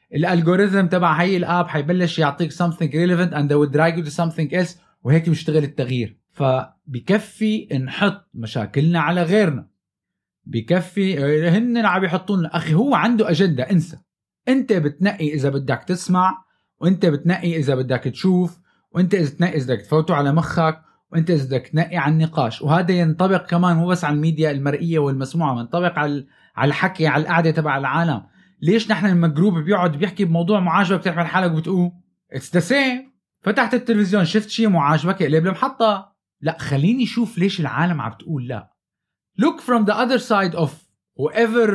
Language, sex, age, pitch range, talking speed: Arabic, male, 20-39, 155-200 Hz, 155 wpm